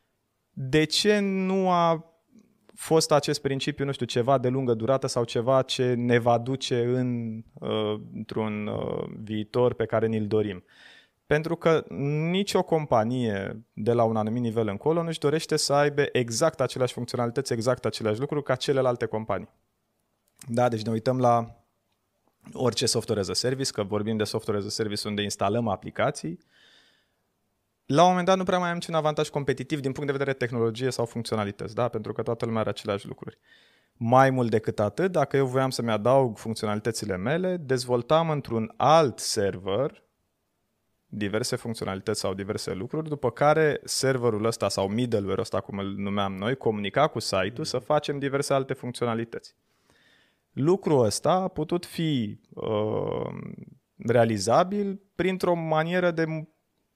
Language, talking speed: Romanian, 155 wpm